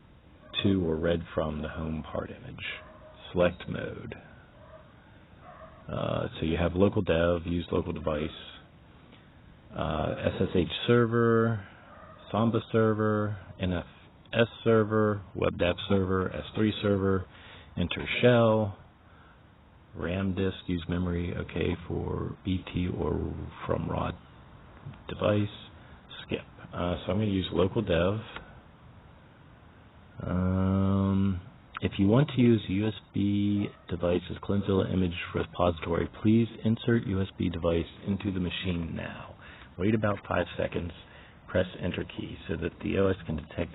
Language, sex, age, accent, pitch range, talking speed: English, male, 40-59, American, 85-105 Hz, 115 wpm